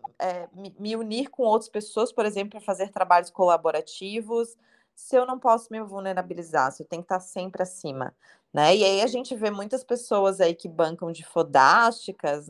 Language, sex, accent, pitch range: Portuguese, female, Brazilian, 175-225 Hz